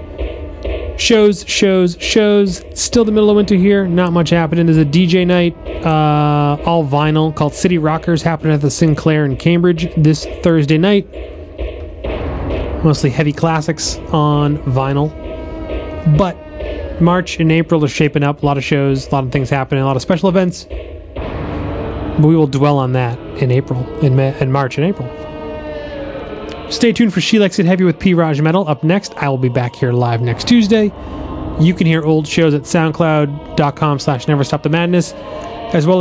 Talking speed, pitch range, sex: 175 wpm, 140-180 Hz, male